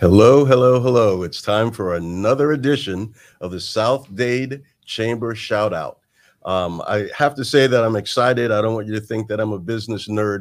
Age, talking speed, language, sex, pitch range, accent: 50-69, 195 wpm, English, male, 95-120 Hz, American